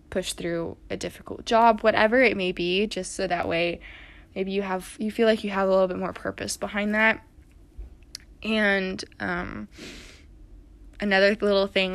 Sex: female